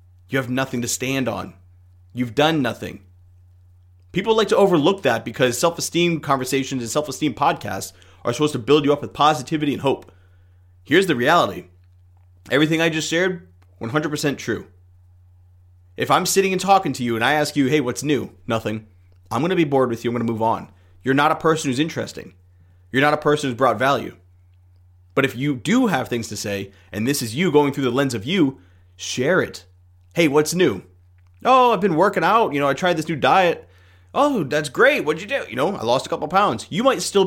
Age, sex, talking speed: 30-49, male, 210 wpm